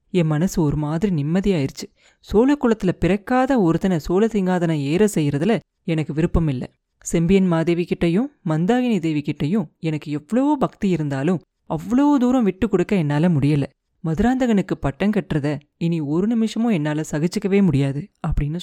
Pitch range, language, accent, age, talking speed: 165-225 Hz, Tamil, native, 30-49, 130 wpm